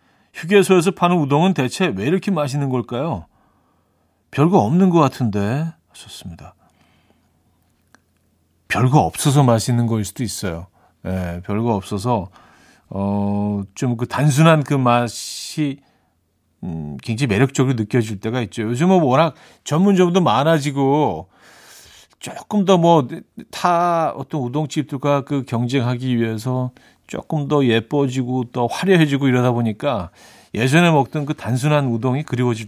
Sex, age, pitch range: male, 40-59, 115-165 Hz